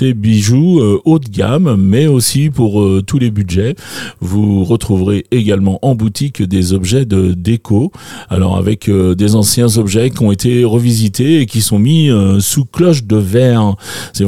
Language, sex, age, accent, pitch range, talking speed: French, male, 40-59, French, 105-135 Hz, 170 wpm